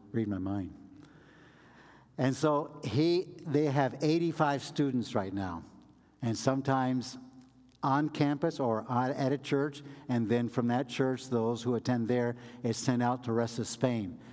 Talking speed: 150 wpm